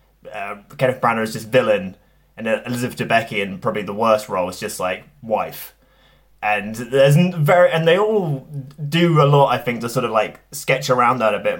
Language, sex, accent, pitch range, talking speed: English, male, British, 115-145 Hz, 200 wpm